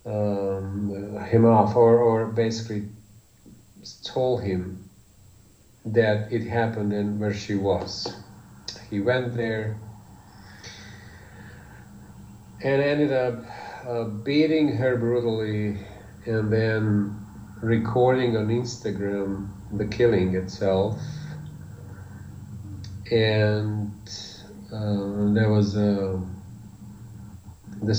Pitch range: 95-110 Hz